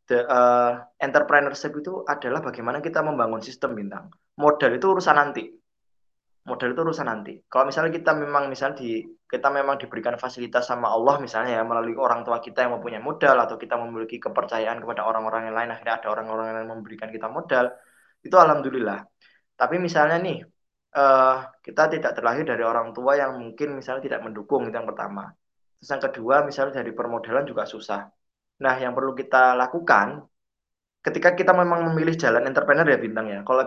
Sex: male